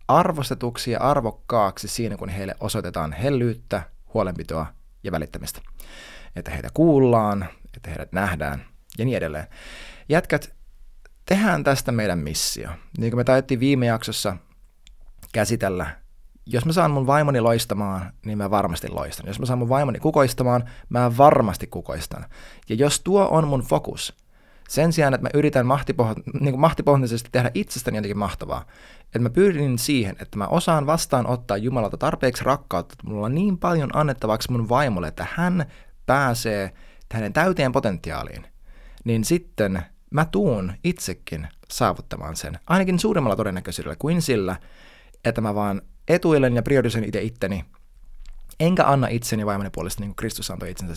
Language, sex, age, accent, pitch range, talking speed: Finnish, male, 20-39, native, 95-140 Hz, 145 wpm